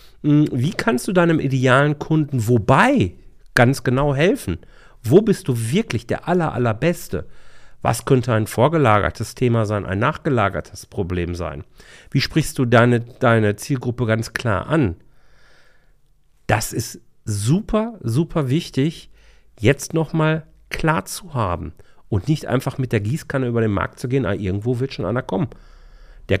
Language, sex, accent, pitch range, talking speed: German, male, German, 100-145 Hz, 145 wpm